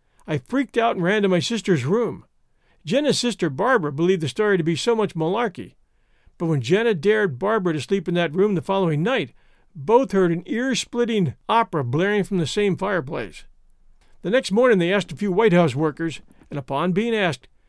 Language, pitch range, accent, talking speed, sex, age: English, 160-210 Hz, American, 195 wpm, male, 50-69